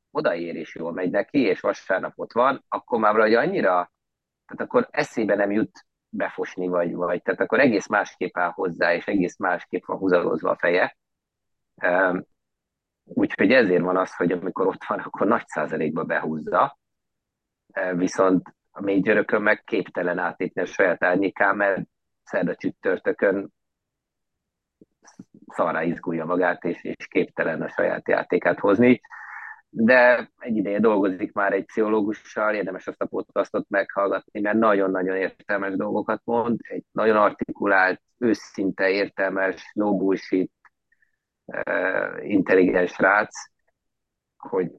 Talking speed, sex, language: 125 wpm, male, Hungarian